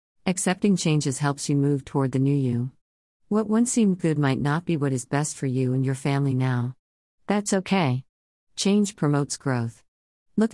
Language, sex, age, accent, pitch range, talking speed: English, female, 50-69, American, 125-160 Hz, 175 wpm